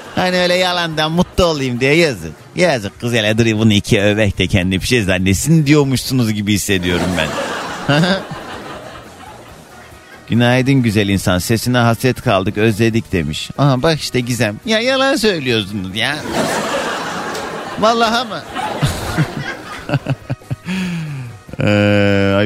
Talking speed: 110 wpm